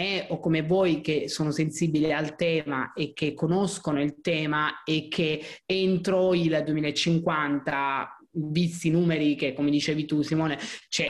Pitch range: 150-180 Hz